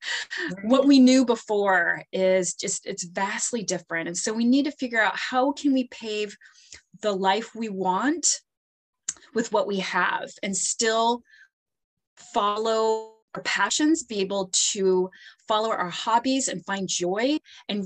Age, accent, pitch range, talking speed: 20-39, American, 185-240 Hz, 145 wpm